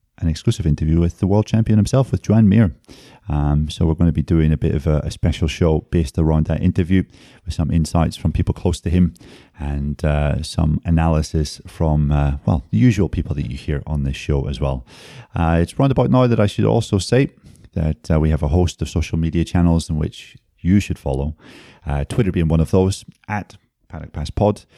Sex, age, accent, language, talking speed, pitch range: male, 30-49, British, English, 220 wpm, 80-100 Hz